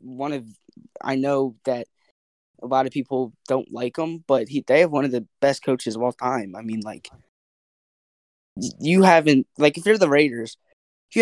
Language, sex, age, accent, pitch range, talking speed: English, male, 10-29, American, 120-150 Hz, 180 wpm